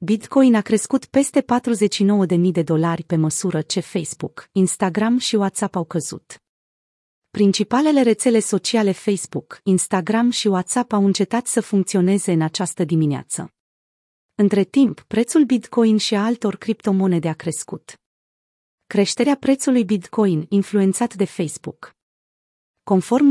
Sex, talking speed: female, 120 wpm